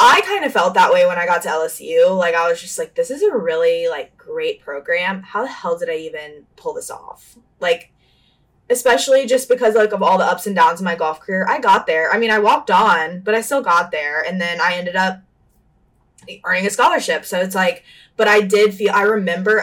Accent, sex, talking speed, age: American, female, 235 wpm, 20-39